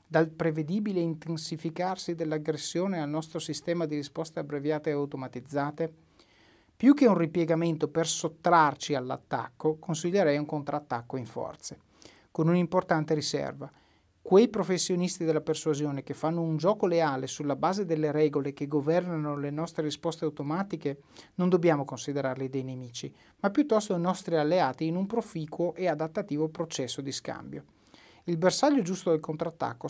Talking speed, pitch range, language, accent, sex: 140 wpm, 145-170 Hz, Italian, native, male